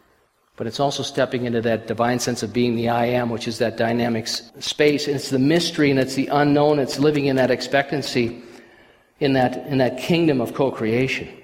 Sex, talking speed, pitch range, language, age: male, 200 wpm, 115-135 Hz, English, 50-69